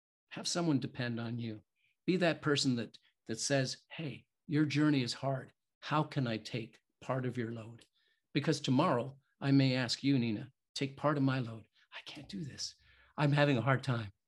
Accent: American